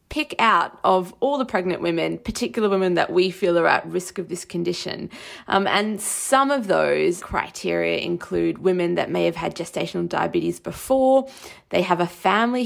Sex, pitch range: female, 180-220 Hz